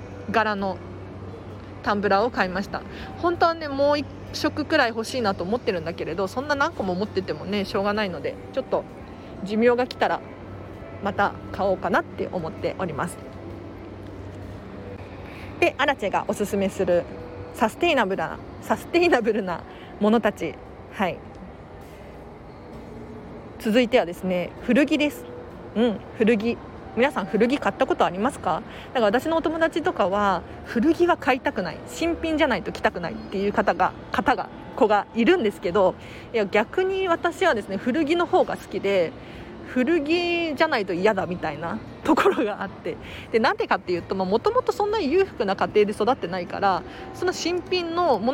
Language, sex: Japanese, female